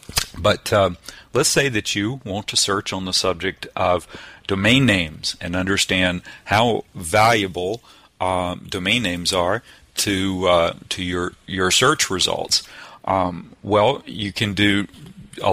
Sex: male